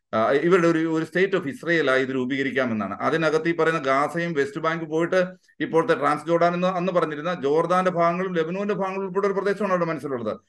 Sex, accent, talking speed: male, native, 175 wpm